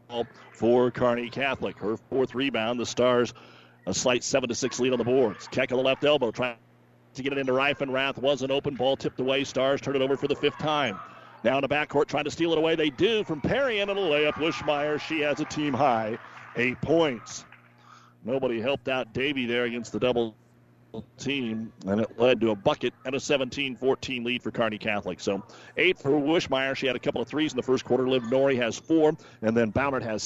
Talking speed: 220 wpm